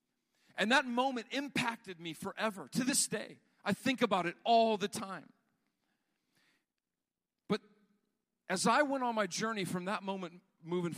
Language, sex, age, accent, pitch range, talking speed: English, male, 50-69, American, 150-215 Hz, 150 wpm